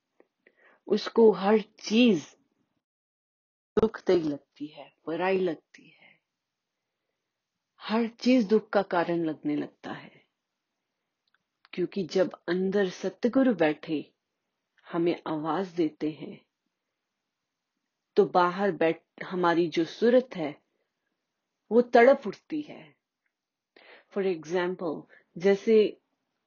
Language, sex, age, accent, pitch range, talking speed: Hindi, female, 30-49, native, 165-215 Hz, 95 wpm